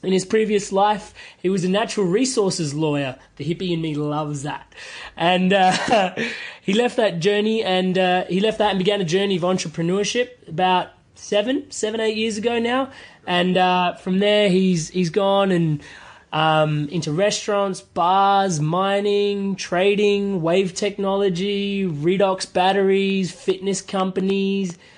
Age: 20-39